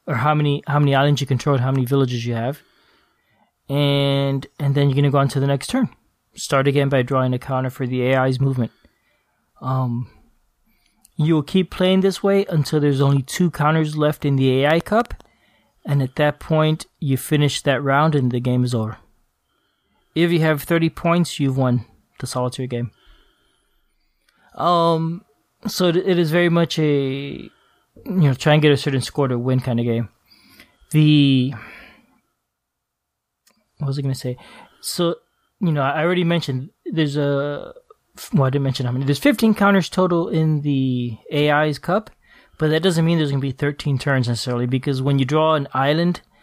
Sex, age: male, 20-39